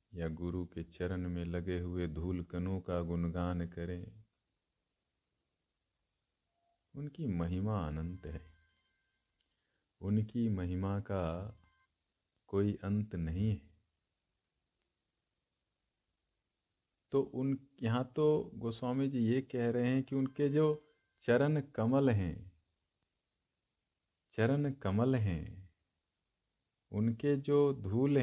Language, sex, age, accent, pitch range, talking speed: Hindi, male, 50-69, native, 85-110 Hz, 95 wpm